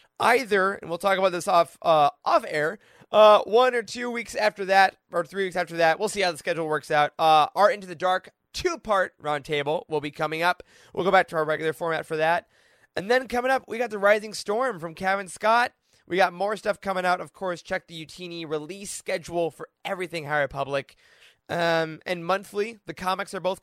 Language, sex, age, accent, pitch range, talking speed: English, male, 20-39, American, 160-225 Hz, 220 wpm